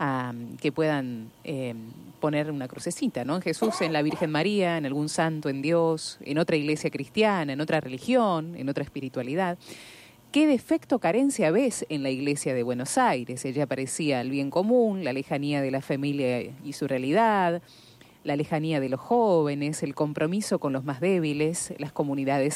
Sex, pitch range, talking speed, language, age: female, 140-190 Hz, 170 wpm, Spanish, 30-49